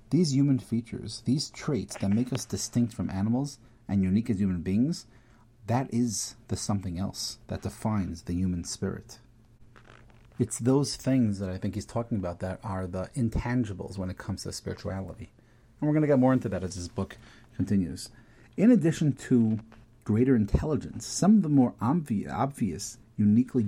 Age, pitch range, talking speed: 40-59, 100-120 Hz, 170 wpm